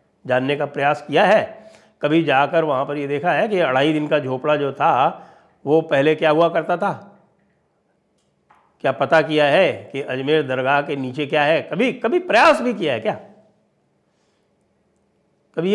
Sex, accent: male, Indian